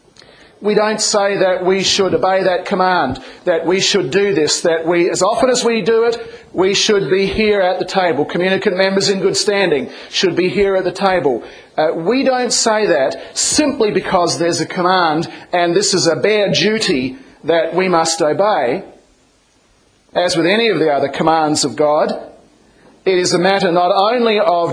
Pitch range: 180-220 Hz